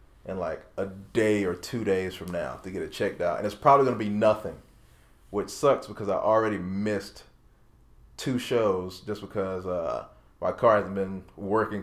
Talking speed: 190 wpm